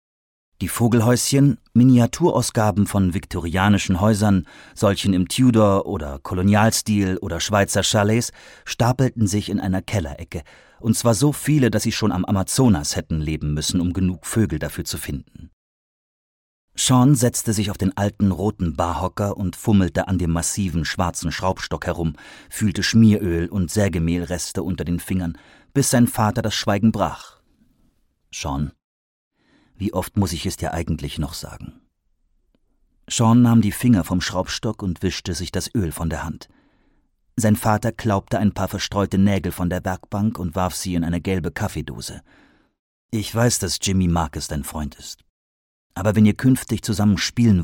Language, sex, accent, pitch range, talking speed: German, male, German, 85-110 Hz, 150 wpm